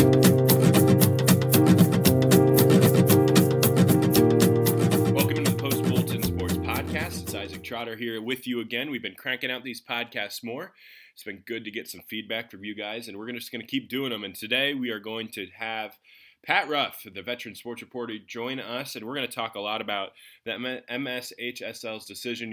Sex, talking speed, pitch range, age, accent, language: male, 175 wpm, 105-125 Hz, 20-39, American, English